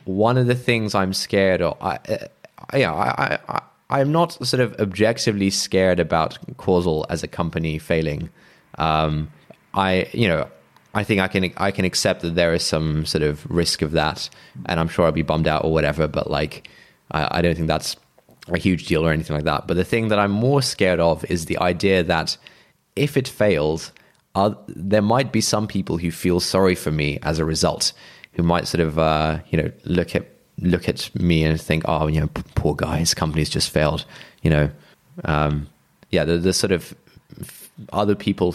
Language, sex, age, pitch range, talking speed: English, male, 20-39, 80-100 Hz, 205 wpm